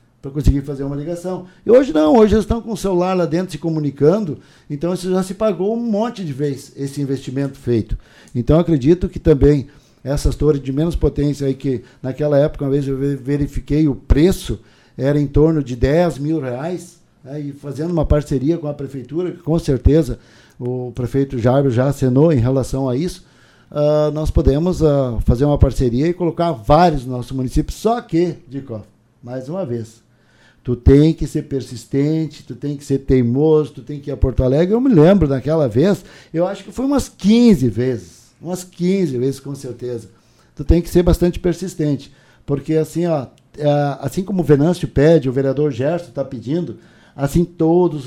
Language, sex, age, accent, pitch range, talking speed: Portuguese, male, 50-69, Brazilian, 130-165 Hz, 185 wpm